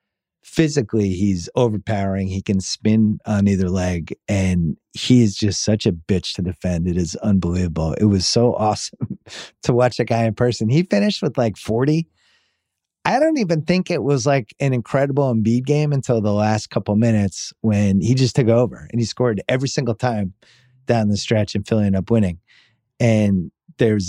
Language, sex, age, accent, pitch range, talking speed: English, male, 30-49, American, 95-120 Hz, 180 wpm